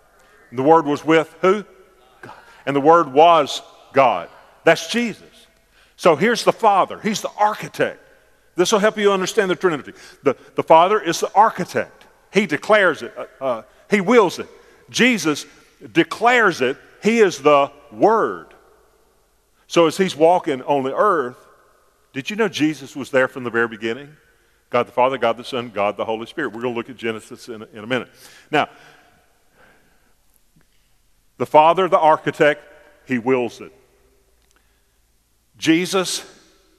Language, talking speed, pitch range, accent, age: English, 155 wpm, 130-210 Hz, American, 50-69